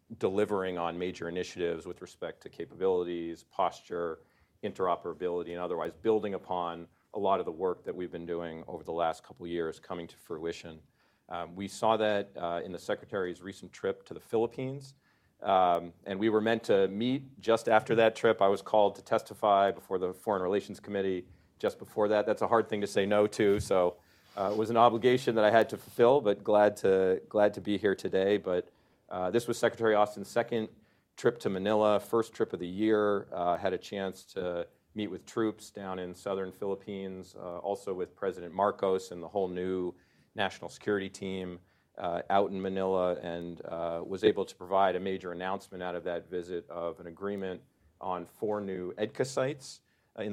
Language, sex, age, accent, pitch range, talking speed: English, male, 40-59, American, 90-105 Hz, 195 wpm